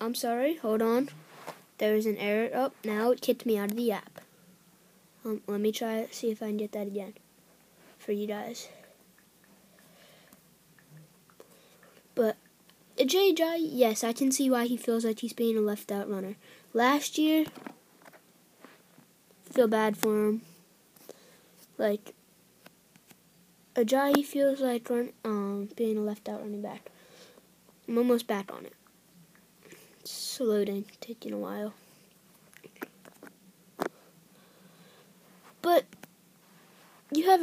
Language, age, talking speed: English, 10-29, 125 wpm